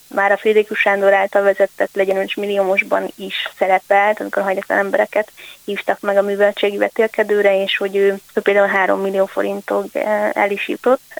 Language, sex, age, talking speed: Hungarian, female, 20-39, 160 wpm